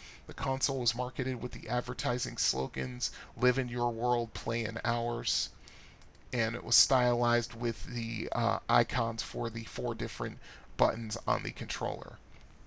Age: 40-59